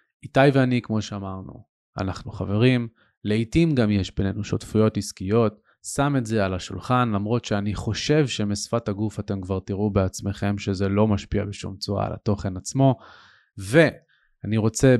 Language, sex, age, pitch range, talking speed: Hebrew, male, 20-39, 100-125 Hz, 145 wpm